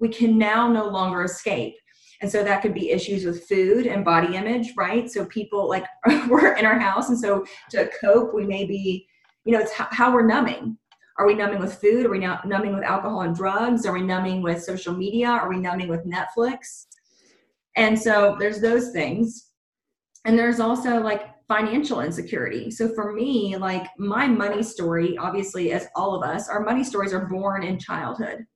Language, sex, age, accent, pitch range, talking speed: English, female, 30-49, American, 190-230 Hz, 190 wpm